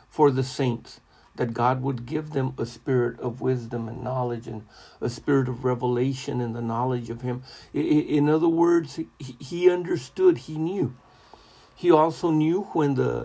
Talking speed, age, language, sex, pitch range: 165 wpm, 50-69, English, male, 125-155 Hz